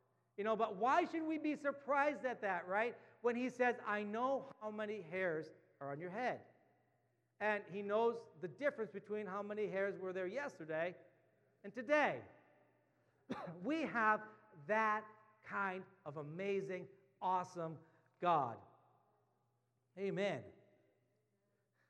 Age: 50-69